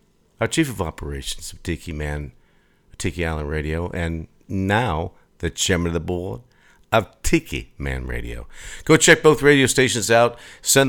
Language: English